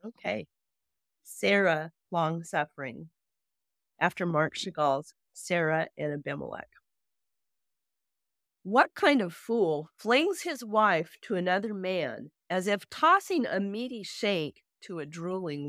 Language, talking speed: English, 105 wpm